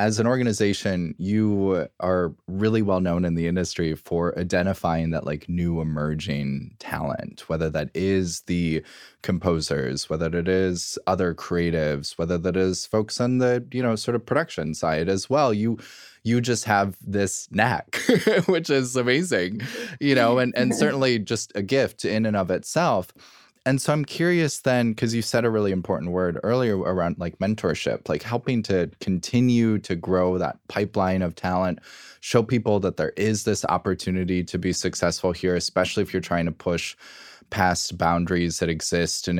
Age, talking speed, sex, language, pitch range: 20-39, 170 wpm, male, English, 85-110 Hz